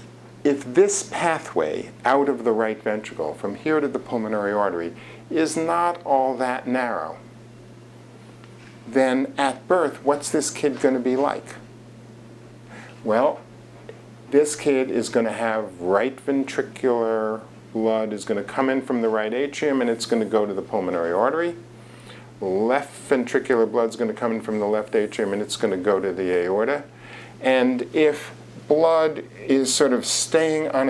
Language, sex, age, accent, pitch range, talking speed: English, male, 50-69, American, 110-135 Hz, 165 wpm